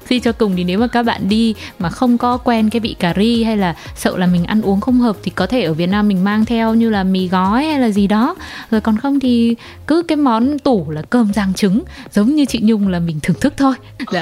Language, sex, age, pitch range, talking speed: Vietnamese, female, 20-39, 200-255 Hz, 275 wpm